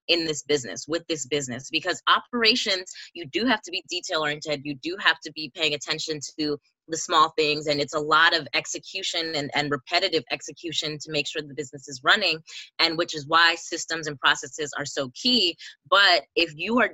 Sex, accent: female, American